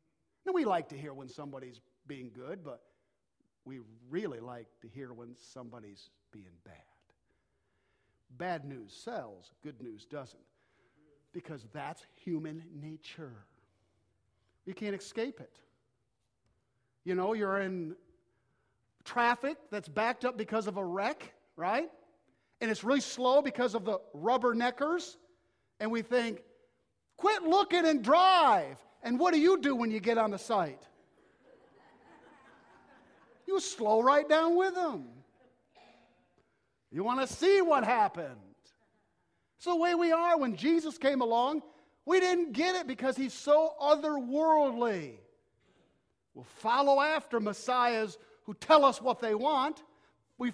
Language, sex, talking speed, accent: English, male, 135 wpm, American